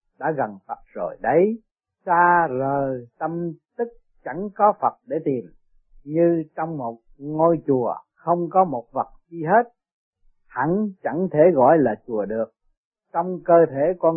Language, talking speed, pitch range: Vietnamese, 155 wpm, 140-190 Hz